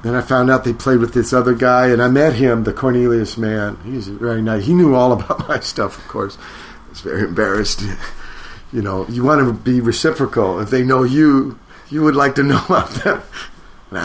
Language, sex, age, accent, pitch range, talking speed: English, male, 50-69, American, 110-140 Hz, 220 wpm